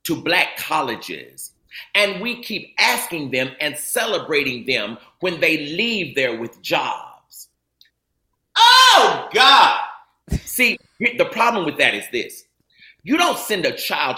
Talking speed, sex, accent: 130 wpm, male, American